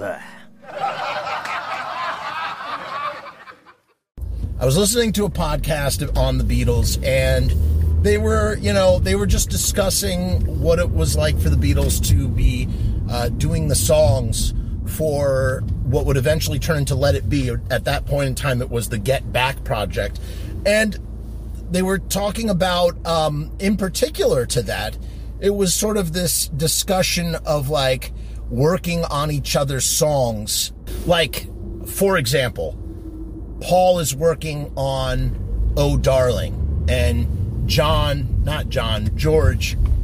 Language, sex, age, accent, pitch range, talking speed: English, male, 30-49, American, 85-135 Hz, 130 wpm